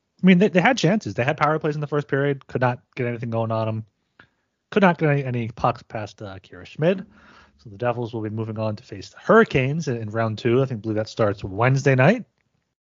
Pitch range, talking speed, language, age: 110-145 Hz, 245 wpm, English, 30-49